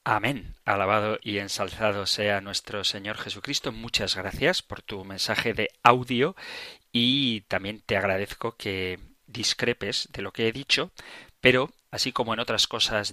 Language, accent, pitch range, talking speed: Spanish, Spanish, 105-125 Hz, 145 wpm